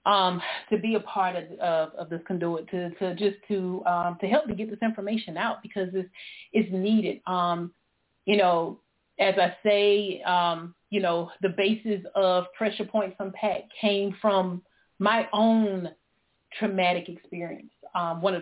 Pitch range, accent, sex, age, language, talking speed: 185-220 Hz, American, female, 30-49, English, 165 wpm